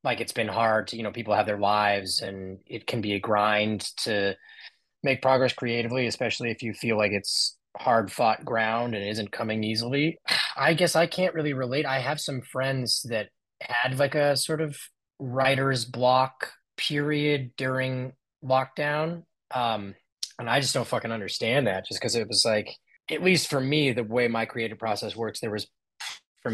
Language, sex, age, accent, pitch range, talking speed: English, male, 20-39, American, 110-140 Hz, 185 wpm